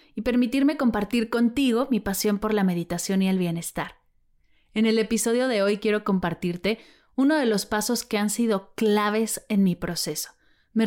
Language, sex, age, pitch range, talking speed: Spanish, female, 30-49, 190-240 Hz, 170 wpm